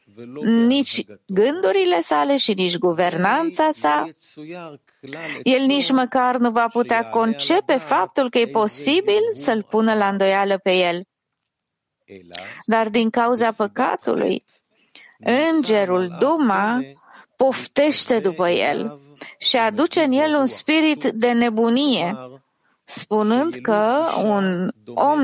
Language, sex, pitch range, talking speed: English, female, 185-260 Hz, 105 wpm